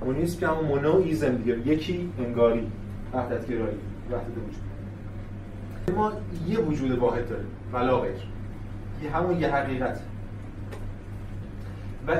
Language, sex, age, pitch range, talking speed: Persian, male, 30-49, 100-145 Hz, 120 wpm